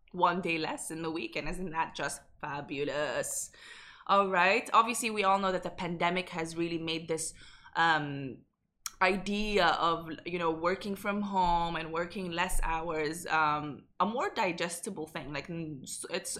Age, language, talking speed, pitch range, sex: 20-39, Arabic, 155 wpm, 170-210 Hz, female